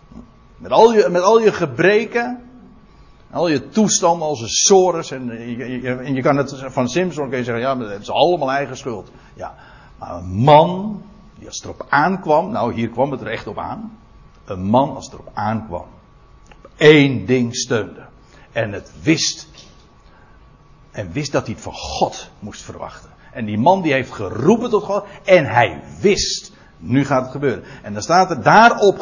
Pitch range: 125-185 Hz